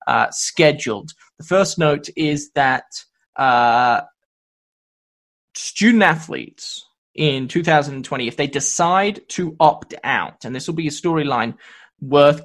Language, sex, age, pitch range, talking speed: English, male, 20-39, 140-165 Hz, 115 wpm